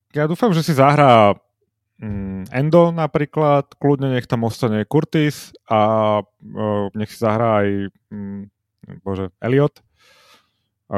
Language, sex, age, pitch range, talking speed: Slovak, male, 30-49, 105-125 Hz, 125 wpm